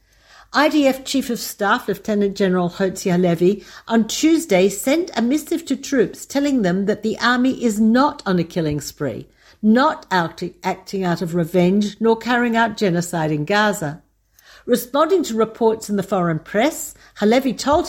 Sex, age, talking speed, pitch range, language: female, 60-79, 155 wpm, 185-240 Hz, Hebrew